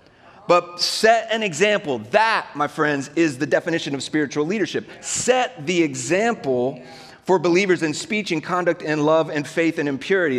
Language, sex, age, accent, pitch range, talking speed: English, male, 30-49, American, 130-165 Hz, 160 wpm